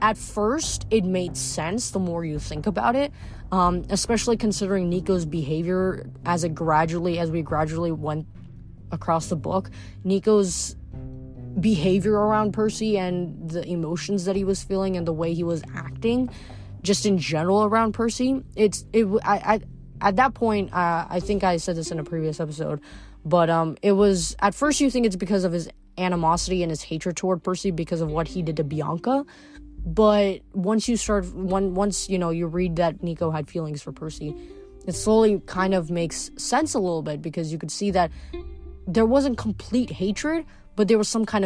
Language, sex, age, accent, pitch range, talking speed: English, female, 20-39, American, 160-205 Hz, 185 wpm